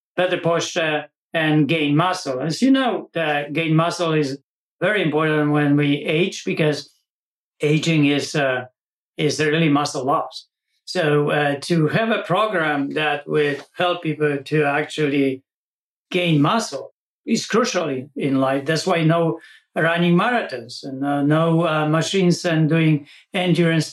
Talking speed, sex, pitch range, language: 145 wpm, male, 145-175 Hz, English